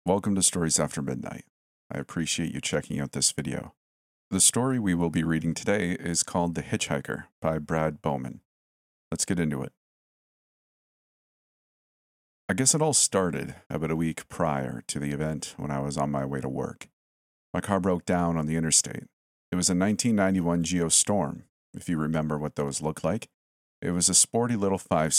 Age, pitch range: 40-59, 75-95 Hz